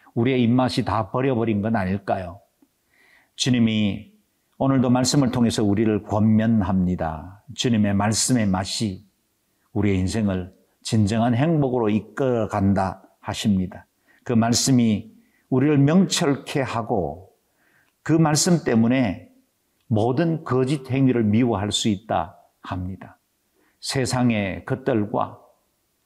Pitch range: 105-130 Hz